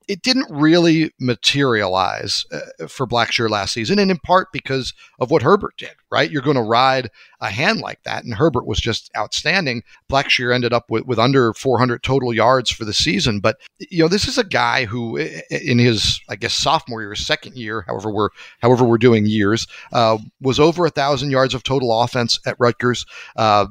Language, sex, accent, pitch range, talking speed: English, male, American, 120-155 Hz, 195 wpm